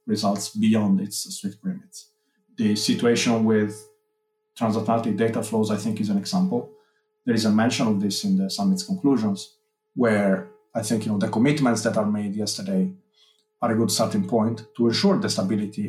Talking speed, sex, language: 165 wpm, male, English